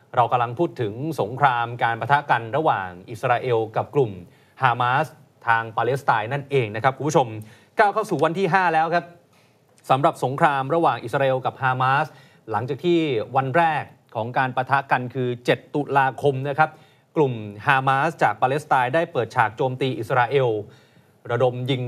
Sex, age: male, 30-49